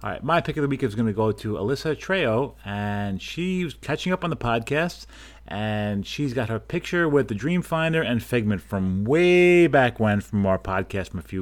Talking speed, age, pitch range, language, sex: 215 wpm, 30-49, 95-125 Hz, English, male